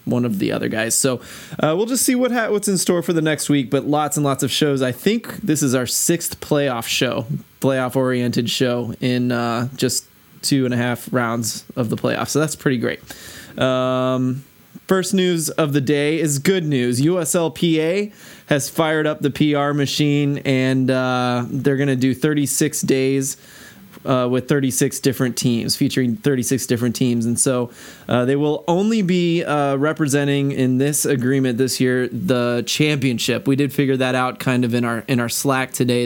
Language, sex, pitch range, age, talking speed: English, male, 125-150 Hz, 20-39, 190 wpm